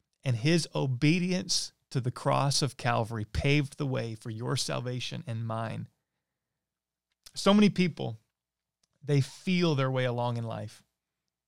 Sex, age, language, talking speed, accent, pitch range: male, 30-49, English, 135 wpm, American, 115-145 Hz